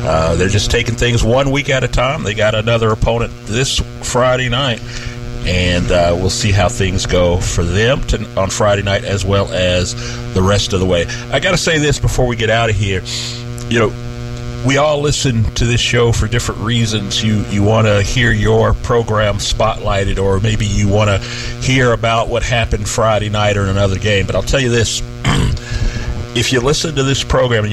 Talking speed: 205 wpm